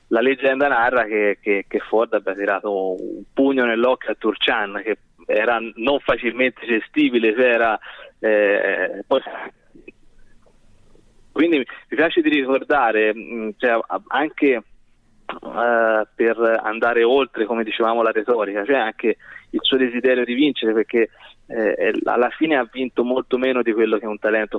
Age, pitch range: 20-39, 110-130 Hz